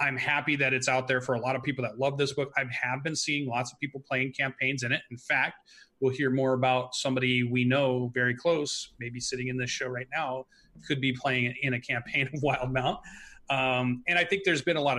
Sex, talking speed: male, 240 wpm